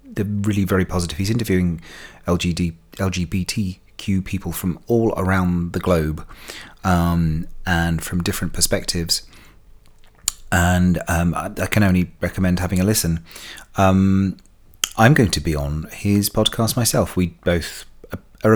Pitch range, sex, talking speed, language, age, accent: 85-100 Hz, male, 125 wpm, English, 30-49, British